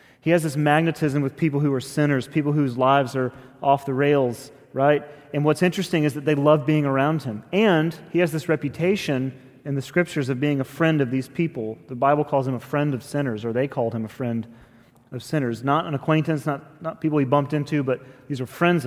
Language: English